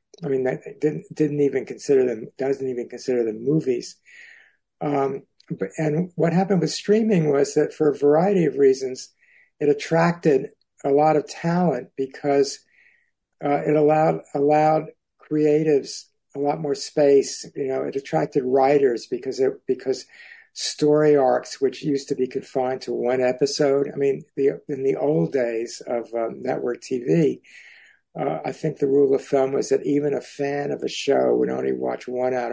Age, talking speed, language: 60-79, 170 wpm, English